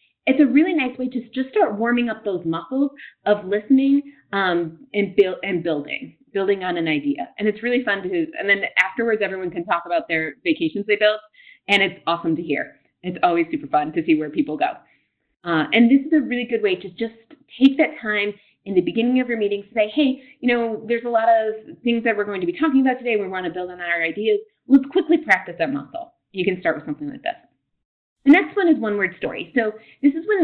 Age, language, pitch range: 30-49, English, 185-275 Hz